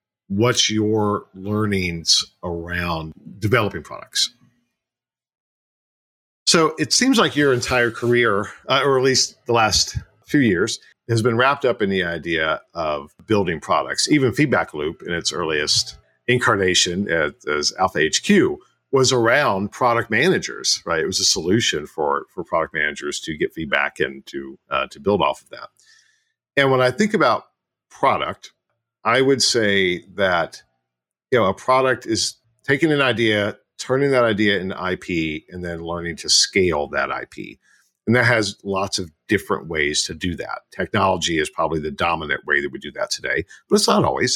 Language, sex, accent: English, male, American